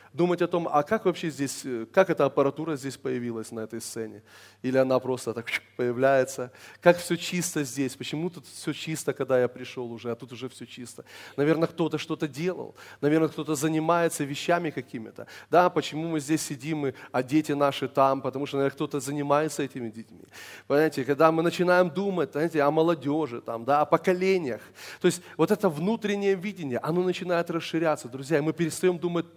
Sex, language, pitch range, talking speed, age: male, Russian, 125-165 Hz, 180 wpm, 20-39